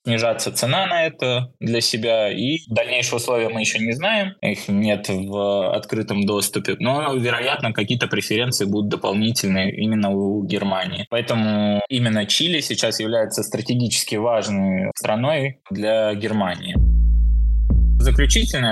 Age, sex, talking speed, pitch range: 20-39, male, 120 wpm, 105-125 Hz